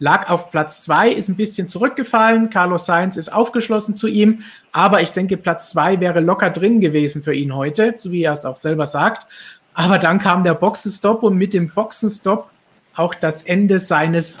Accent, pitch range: German, 160-205 Hz